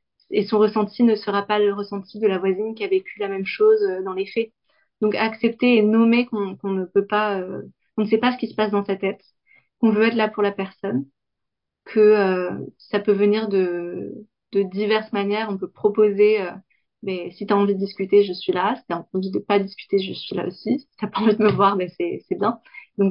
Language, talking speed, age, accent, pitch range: French, 240 wpm, 20-39, French, 190-220 Hz